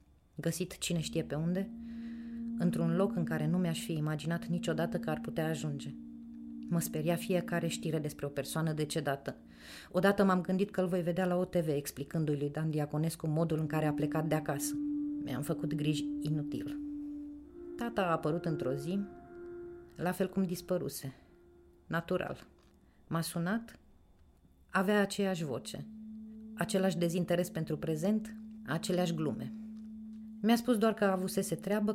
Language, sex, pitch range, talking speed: Romanian, female, 155-200 Hz, 145 wpm